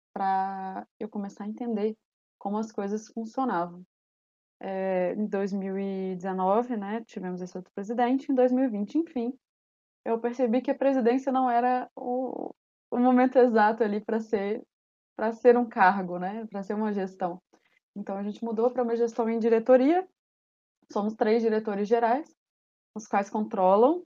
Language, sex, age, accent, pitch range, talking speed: Portuguese, female, 20-39, Brazilian, 195-240 Hz, 145 wpm